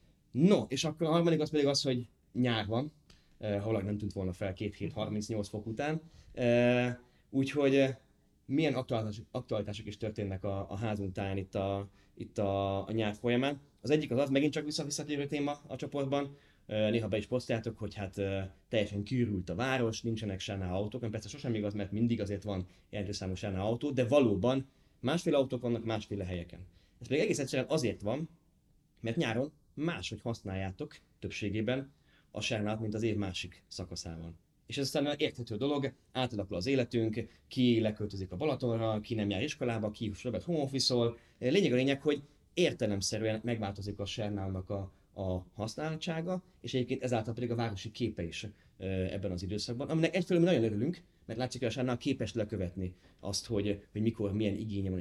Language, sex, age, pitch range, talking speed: Hungarian, male, 20-39, 100-135 Hz, 175 wpm